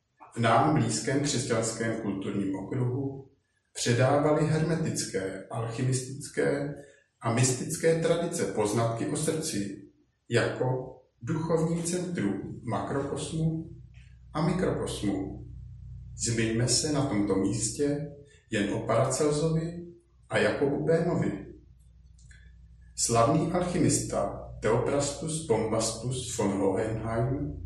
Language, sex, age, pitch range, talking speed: Czech, male, 50-69, 110-150 Hz, 80 wpm